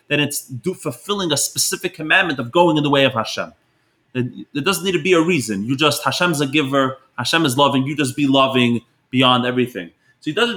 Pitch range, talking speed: 125-160 Hz, 210 wpm